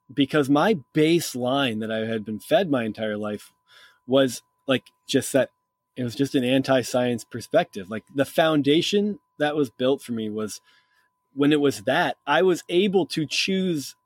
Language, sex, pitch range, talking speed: English, male, 120-180 Hz, 165 wpm